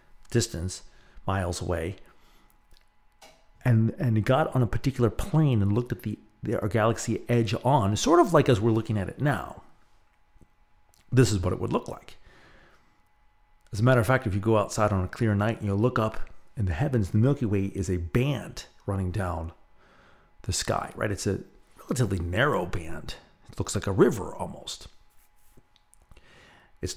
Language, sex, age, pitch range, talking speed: English, male, 40-59, 95-120 Hz, 170 wpm